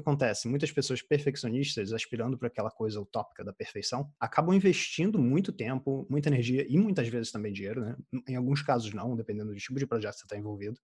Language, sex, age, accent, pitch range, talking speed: Portuguese, male, 20-39, Brazilian, 120-145 Hz, 200 wpm